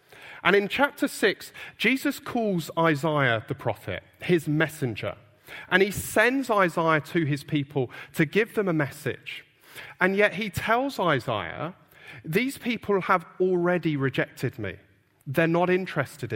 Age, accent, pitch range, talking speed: 40-59, British, 130-195 Hz, 135 wpm